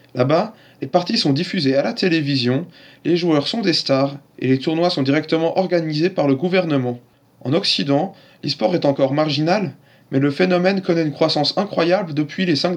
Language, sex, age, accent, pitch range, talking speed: French, male, 20-39, French, 140-175 Hz, 180 wpm